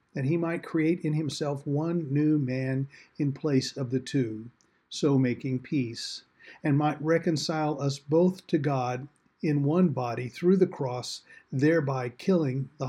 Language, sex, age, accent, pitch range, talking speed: English, male, 50-69, American, 130-160 Hz, 155 wpm